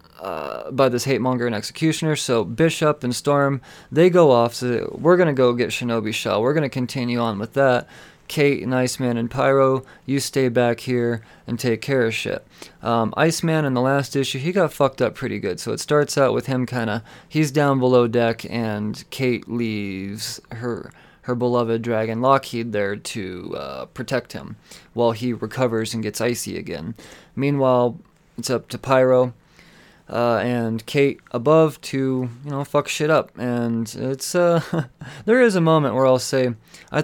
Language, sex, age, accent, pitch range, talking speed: English, male, 20-39, American, 115-135 Hz, 175 wpm